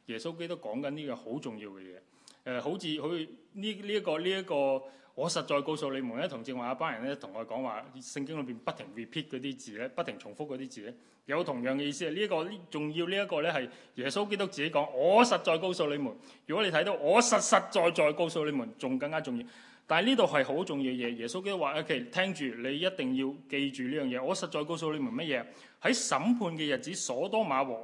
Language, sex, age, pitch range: Chinese, male, 20-39, 135-195 Hz